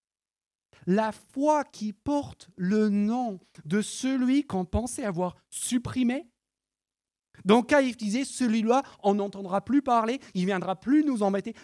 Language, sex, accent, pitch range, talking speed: French, male, French, 175-265 Hz, 135 wpm